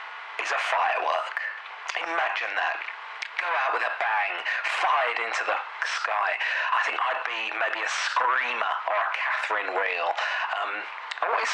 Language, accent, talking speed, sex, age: English, British, 140 wpm, male, 40-59